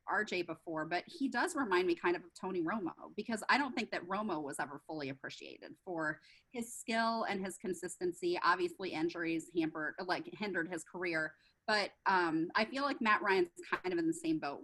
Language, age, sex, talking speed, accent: English, 30-49, female, 195 wpm, American